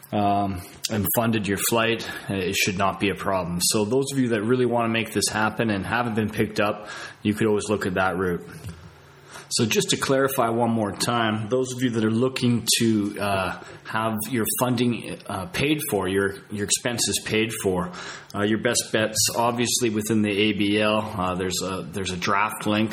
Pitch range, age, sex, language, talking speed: 100-120 Hz, 20-39, male, English, 195 wpm